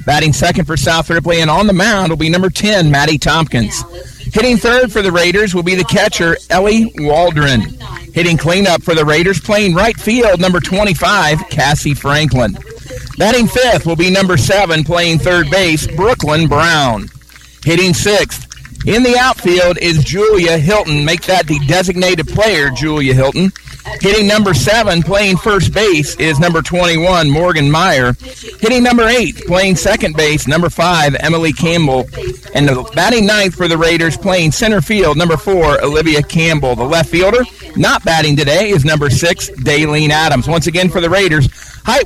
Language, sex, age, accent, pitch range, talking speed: English, male, 50-69, American, 150-195 Hz, 165 wpm